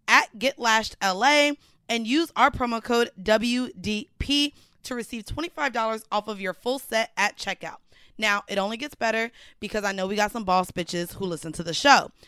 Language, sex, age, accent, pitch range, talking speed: English, female, 20-39, American, 205-255 Hz, 185 wpm